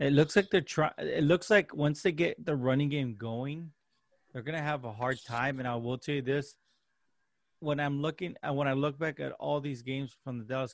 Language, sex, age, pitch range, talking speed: English, male, 30-49, 130-150 Hz, 230 wpm